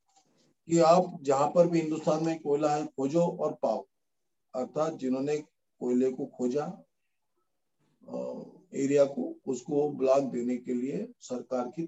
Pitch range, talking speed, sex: 130-170 Hz, 130 wpm, male